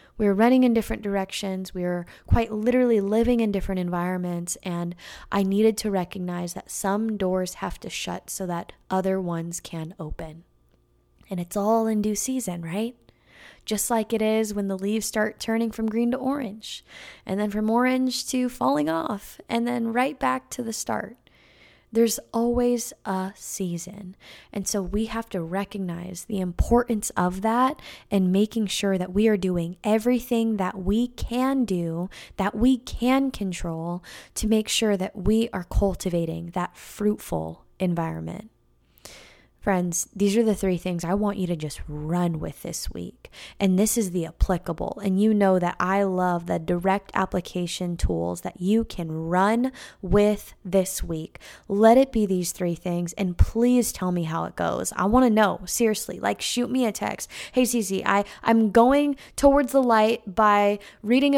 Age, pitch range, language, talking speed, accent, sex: 10-29, 180-230 Hz, English, 170 wpm, American, female